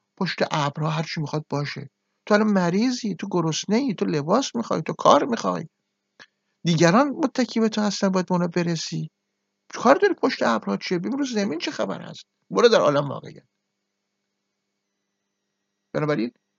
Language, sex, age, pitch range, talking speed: Persian, male, 60-79, 100-160 Hz, 140 wpm